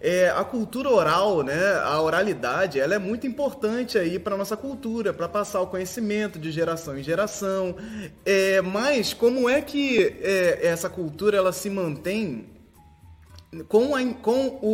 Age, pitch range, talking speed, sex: 20-39, 160-225 Hz, 125 wpm, male